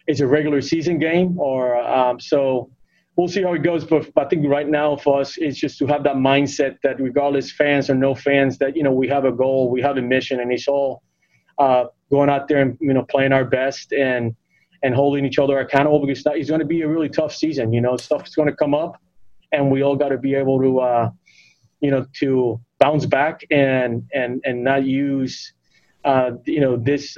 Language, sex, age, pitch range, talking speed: English, male, 20-39, 130-150 Hz, 225 wpm